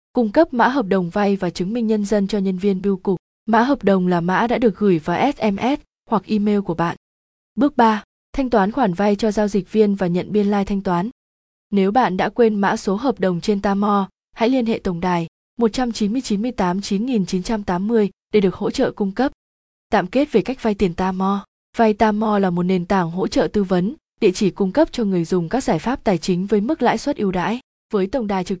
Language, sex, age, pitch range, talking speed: Vietnamese, female, 20-39, 190-230 Hz, 225 wpm